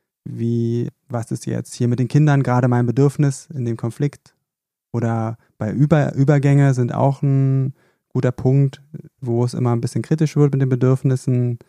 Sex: male